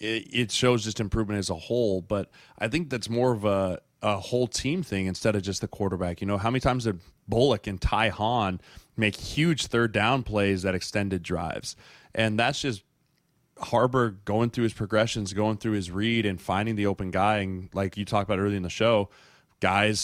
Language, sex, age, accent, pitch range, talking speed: English, male, 20-39, American, 100-115 Hz, 205 wpm